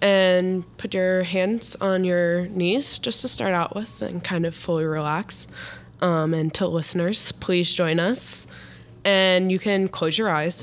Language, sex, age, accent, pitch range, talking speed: English, female, 10-29, American, 160-190 Hz, 170 wpm